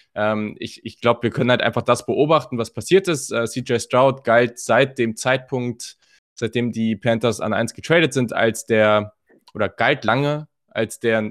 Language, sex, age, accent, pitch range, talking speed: German, male, 20-39, German, 110-130 Hz, 180 wpm